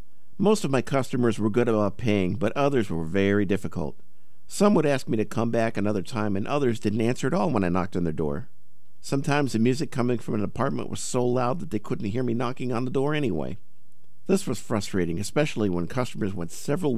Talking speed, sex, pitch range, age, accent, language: 220 wpm, male, 95-125 Hz, 50-69, American, English